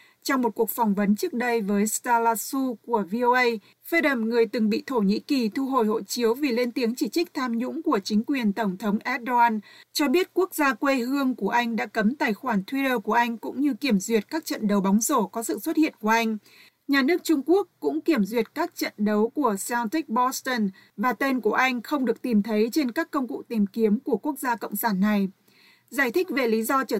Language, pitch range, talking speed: Vietnamese, 215-270 Hz, 235 wpm